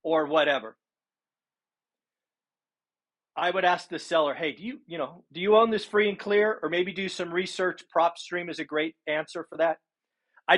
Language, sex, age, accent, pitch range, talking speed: English, male, 40-59, American, 170-215 Hz, 185 wpm